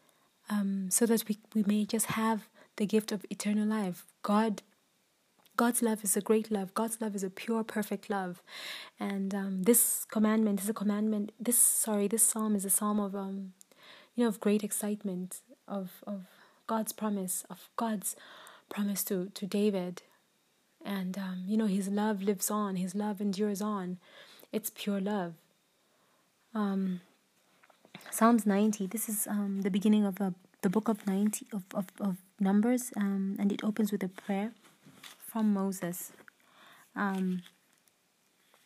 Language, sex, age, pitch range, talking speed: English, female, 20-39, 195-220 Hz, 160 wpm